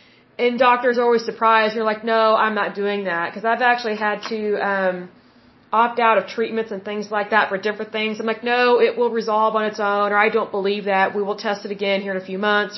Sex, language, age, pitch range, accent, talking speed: female, Hindi, 30-49, 205-240 Hz, American, 255 wpm